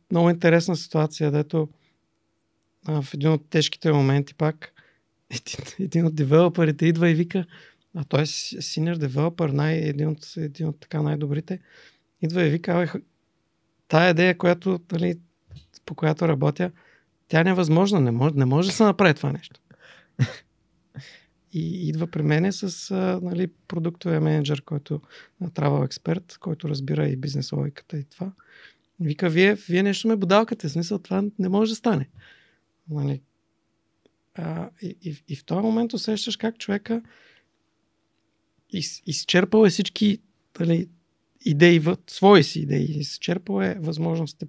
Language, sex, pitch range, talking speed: Bulgarian, male, 155-190 Hz, 140 wpm